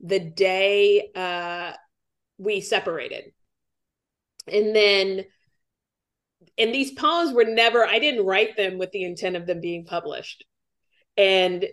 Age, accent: 30-49, American